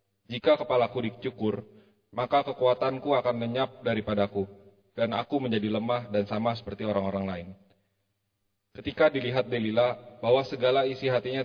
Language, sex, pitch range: Indonesian, male, 100-125 Hz